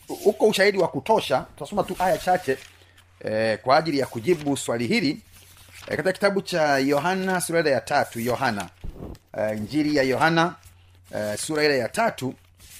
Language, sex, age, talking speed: Swahili, male, 40-59, 155 wpm